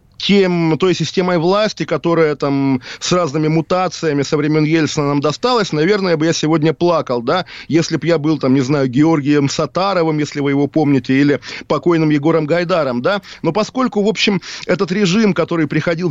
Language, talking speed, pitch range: Russian, 170 wpm, 155-190 Hz